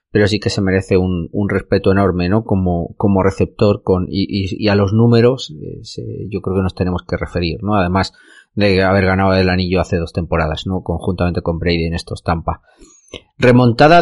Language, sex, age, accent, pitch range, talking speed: Spanish, male, 30-49, Spanish, 95-120 Hz, 205 wpm